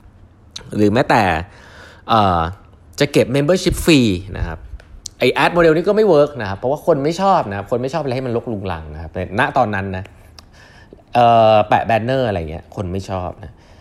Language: Thai